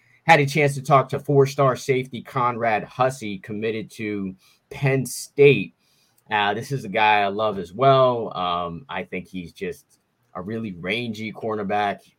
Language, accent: English, American